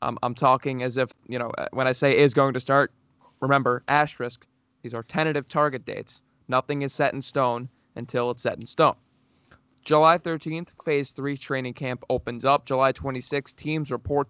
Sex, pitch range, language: male, 125-150 Hz, English